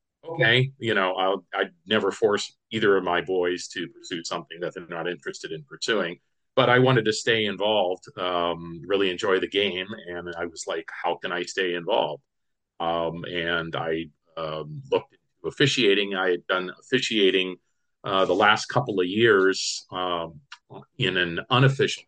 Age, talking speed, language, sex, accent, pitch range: 40-59, 165 wpm, English, male, American, 85-95 Hz